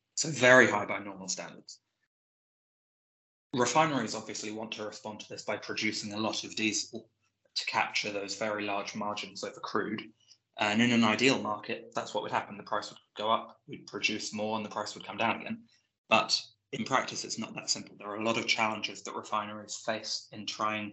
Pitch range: 105-115 Hz